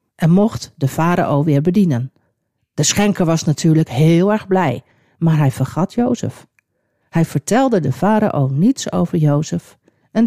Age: 50-69